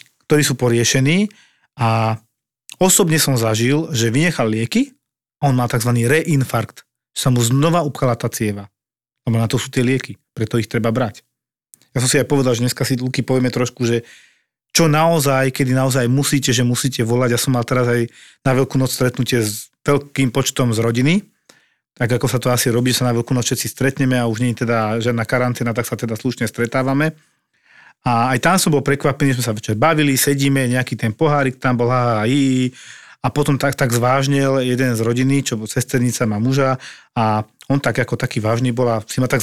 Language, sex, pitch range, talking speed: Slovak, male, 120-140 Hz, 200 wpm